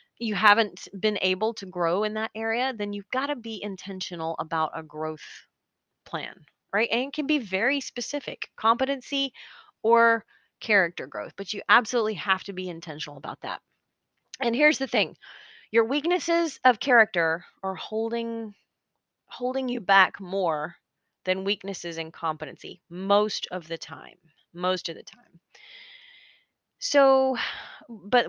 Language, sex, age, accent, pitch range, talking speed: English, female, 30-49, American, 185-255 Hz, 140 wpm